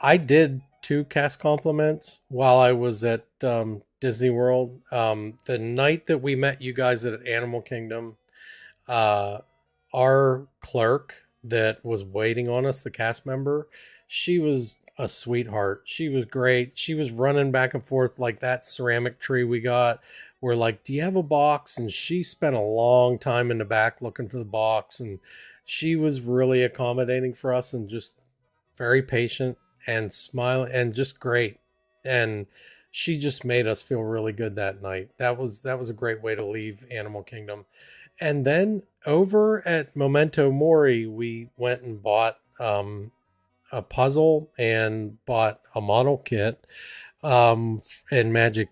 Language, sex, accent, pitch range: English, male, American, 110-130 Hz